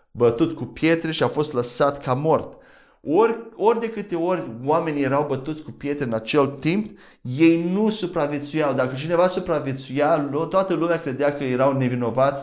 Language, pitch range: Romanian, 125-165 Hz